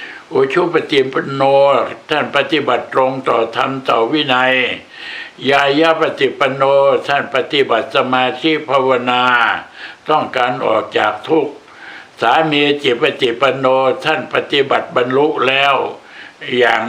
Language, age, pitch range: Thai, 60-79, 130-150 Hz